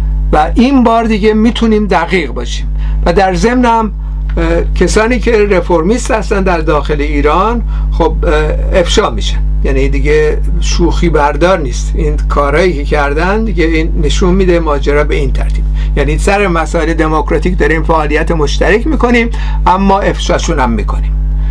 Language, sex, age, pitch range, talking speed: Persian, male, 60-79, 155-205 Hz, 130 wpm